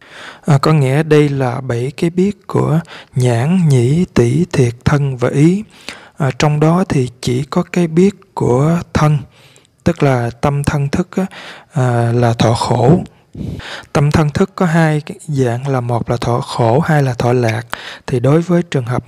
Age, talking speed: 20-39, 165 wpm